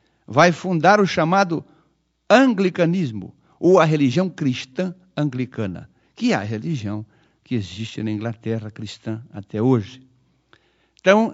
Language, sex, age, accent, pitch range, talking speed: Portuguese, male, 60-79, Brazilian, 130-185 Hz, 115 wpm